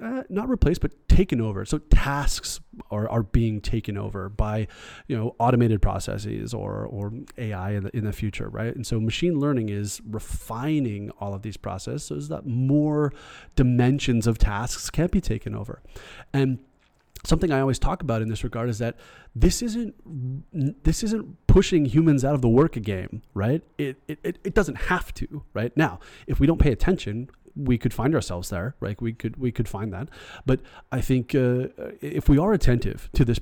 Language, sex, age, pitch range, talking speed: English, male, 30-49, 115-155 Hz, 190 wpm